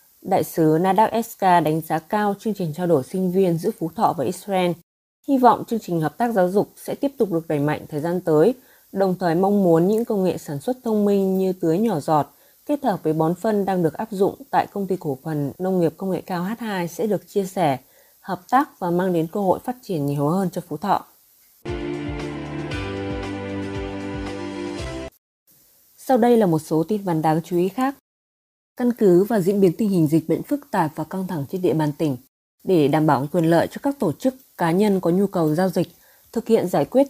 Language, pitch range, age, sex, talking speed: Vietnamese, 160-205 Hz, 20-39, female, 220 wpm